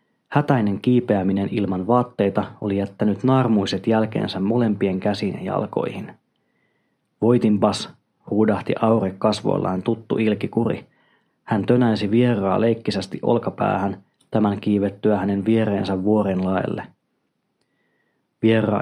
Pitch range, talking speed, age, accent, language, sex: 100-115 Hz, 90 wpm, 30-49, native, Finnish, male